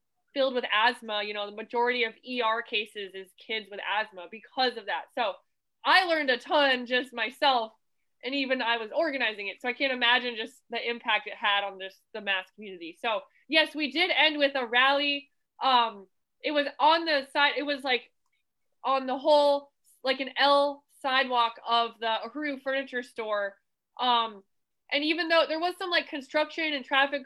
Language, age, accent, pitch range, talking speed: English, 20-39, American, 235-285 Hz, 185 wpm